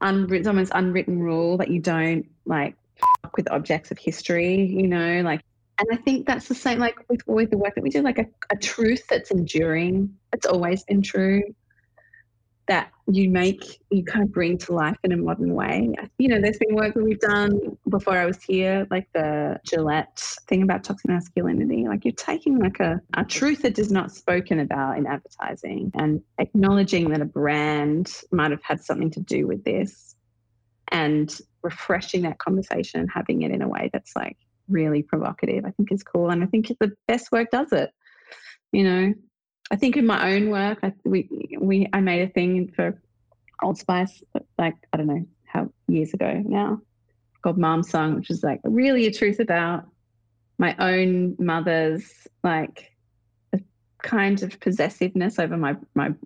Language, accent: English, Australian